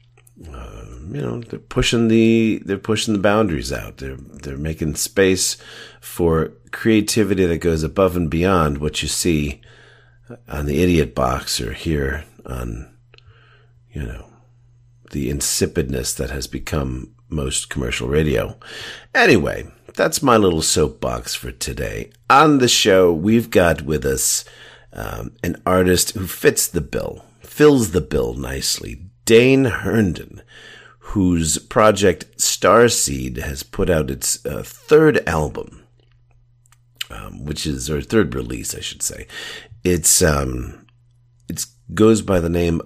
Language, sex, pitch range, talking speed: English, male, 75-115 Hz, 135 wpm